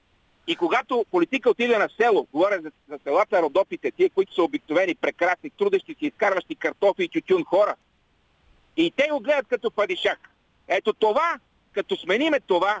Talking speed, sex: 155 wpm, male